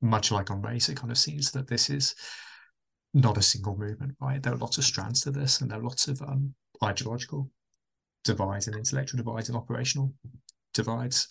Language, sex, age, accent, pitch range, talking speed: English, male, 20-39, British, 105-135 Hz, 195 wpm